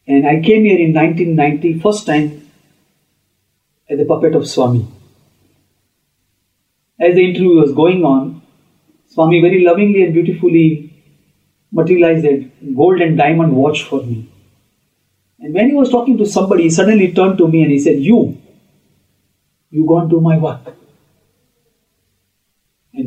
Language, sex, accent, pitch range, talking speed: English, male, Indian, 125-170 Hz, 140 wpm